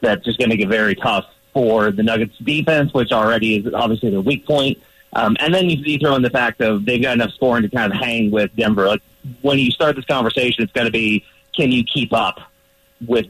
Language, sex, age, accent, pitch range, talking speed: English, male, 30-49, American, 120-145 Hz, 245 wpm